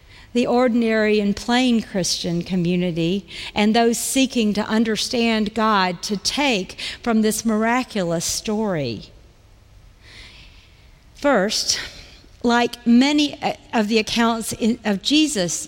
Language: English